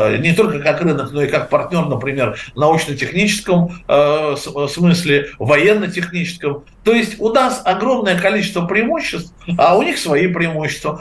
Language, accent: Russian, native